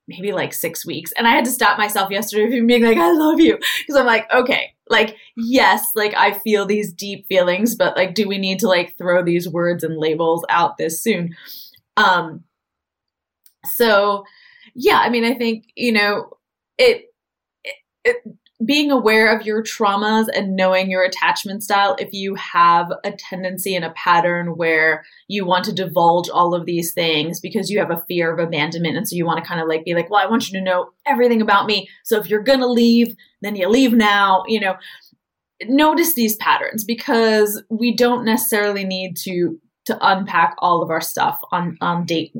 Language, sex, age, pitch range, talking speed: English, female, 20-39, 185-235 Hz, 195 wpm